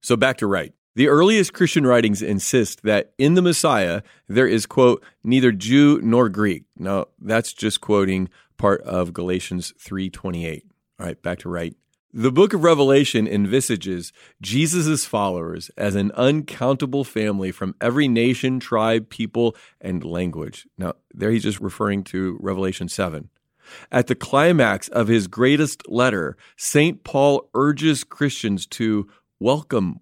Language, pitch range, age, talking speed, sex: English, 105-140 Hz, 40-59, 145 wpm, male